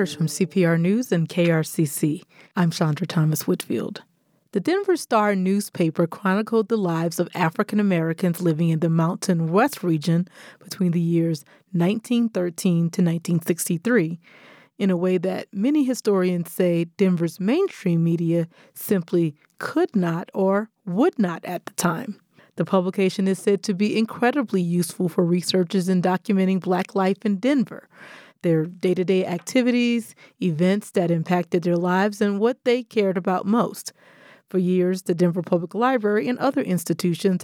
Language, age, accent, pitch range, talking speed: English, 30-49, American, 175-210 Hz, 140 wpm